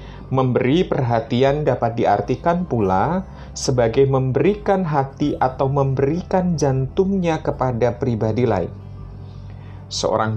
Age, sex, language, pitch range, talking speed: 30-49, male, Indonesian, 105-140 Hz, 85 wpm